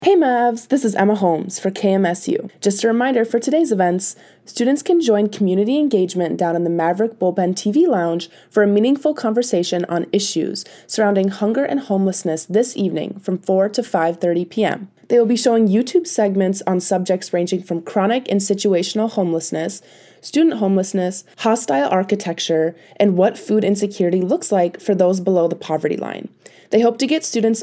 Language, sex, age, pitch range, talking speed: English, female, 20-39, 180-225 Hz, 170 wpm